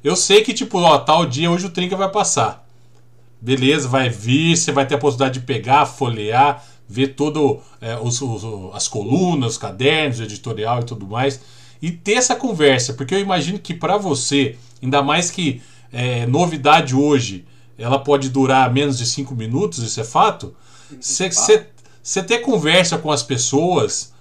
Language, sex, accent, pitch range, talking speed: Portuguese, male, Brazilian, 125-175 Hz, 165 wpm